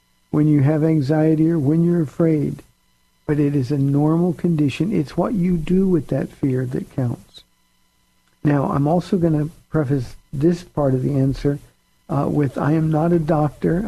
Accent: American